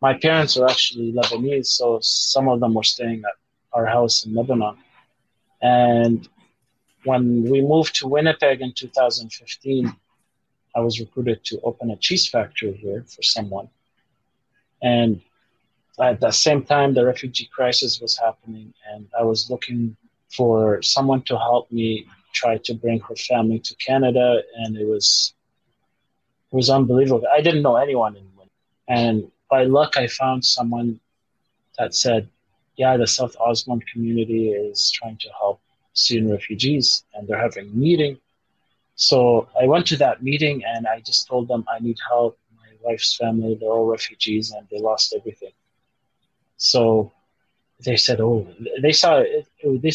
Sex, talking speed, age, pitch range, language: male, 155 wpm, 30-49, 110-130 Hz, English